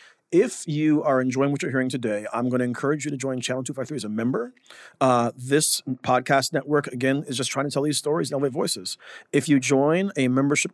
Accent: American